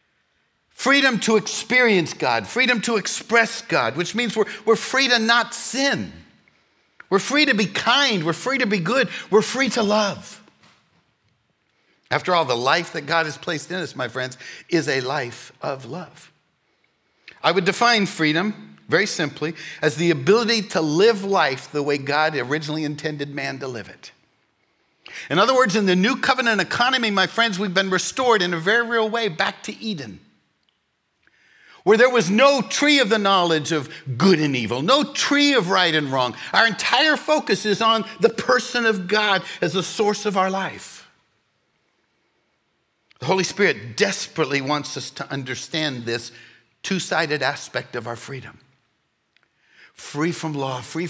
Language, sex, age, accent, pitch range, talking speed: English, male, 60-79, American, 150-225 Hz, 165 wpm